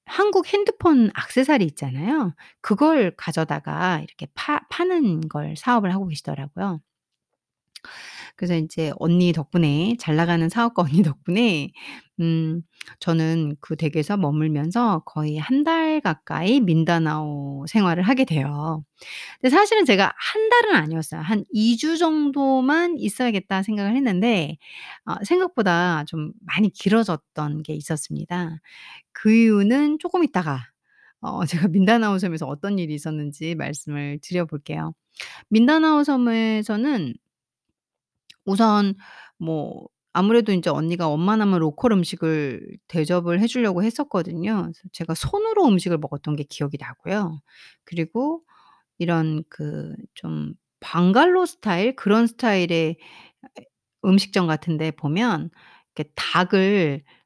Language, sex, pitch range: Korean, female, 155-230 Hz